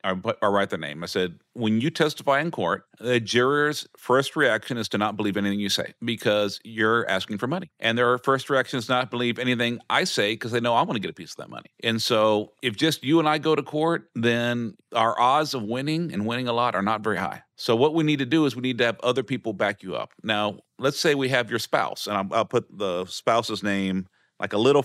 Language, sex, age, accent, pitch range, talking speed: English, male, 40-59, American, 105-135 Hz, 255 wpm